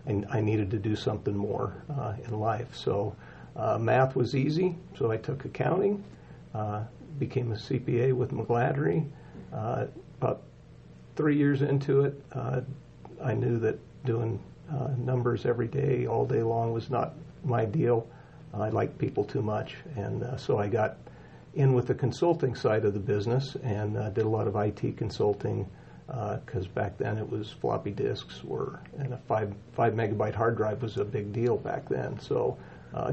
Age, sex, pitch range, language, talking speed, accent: 50-69, male, 110-130 Hz, English, 175 wpm, American